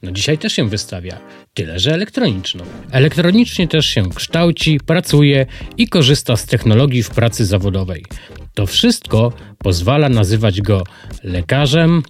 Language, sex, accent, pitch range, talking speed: Polish, male, native, 105-155 Hz, 130 wpm